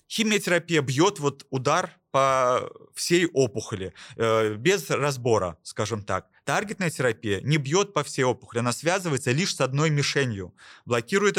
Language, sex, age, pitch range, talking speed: Russian, male, 30-49, 125-160 Hz, 130 wpm